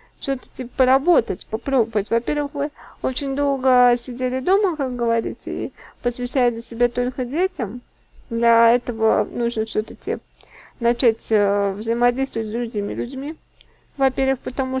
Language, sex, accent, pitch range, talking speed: Russian, female, native, 230-275 Hz, 110 wpm